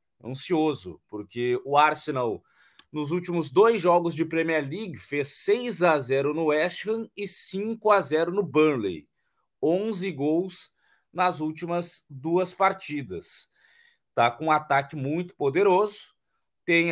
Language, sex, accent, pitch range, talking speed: Portuguese, male, Brazilian, 130-175 Hz, 130 wpm